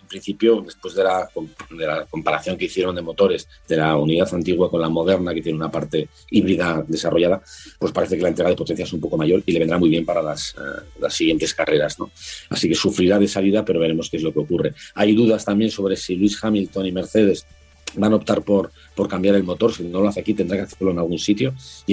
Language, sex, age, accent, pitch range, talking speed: Spanish, male, 40-59, Spanish, 80-100 Hz, 240 wpm